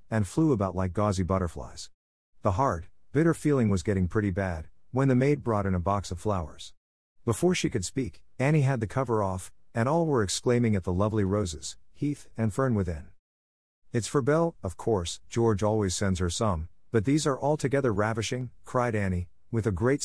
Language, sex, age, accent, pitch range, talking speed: English, male, 50-69, American, 85-125 Hz, 190 wpm